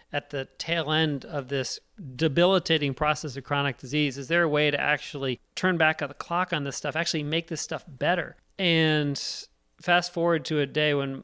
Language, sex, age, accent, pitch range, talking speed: English, male, 40-59, American, 135-170 Hz, 185 wpm